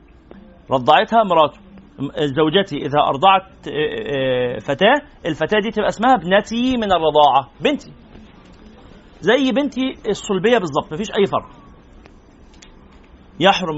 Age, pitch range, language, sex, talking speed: 40-59, 180-240 Hz, Arabic, male, 100 wpm